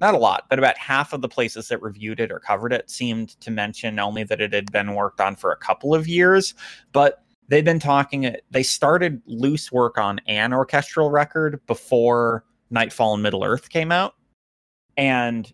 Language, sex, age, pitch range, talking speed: English, male, 30-49, 105-140 Hz, 195 wpm